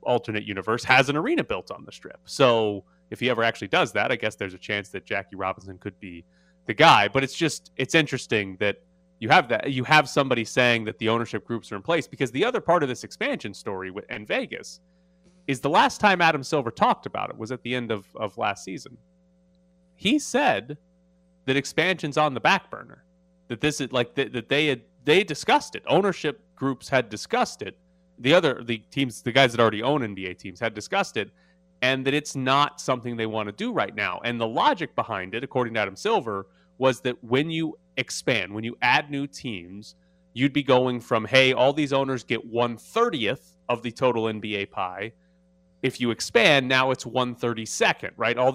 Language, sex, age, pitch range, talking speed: English, male, 30-49, 110-150 Hz, 210 wpm